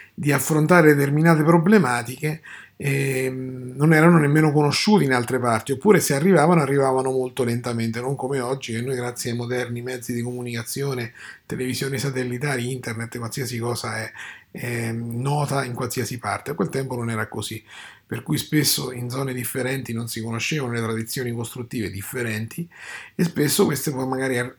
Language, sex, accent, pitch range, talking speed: Italian, male, native, 115-140 Hz, 155 wpm